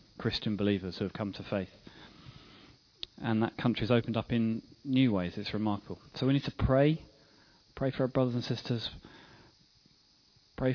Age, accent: 30-49, British